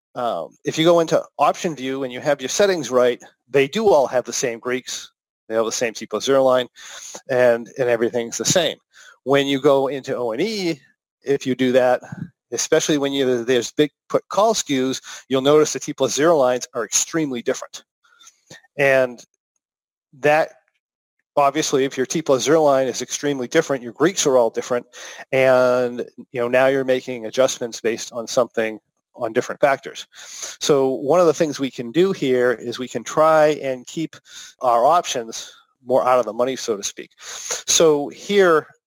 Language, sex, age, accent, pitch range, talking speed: English, male, 40-59, American, 125-150 Hz, 180 wpm